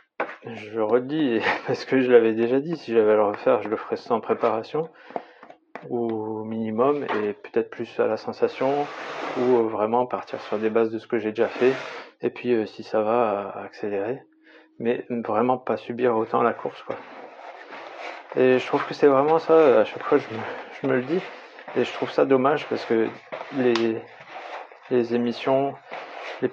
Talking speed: 180 wpm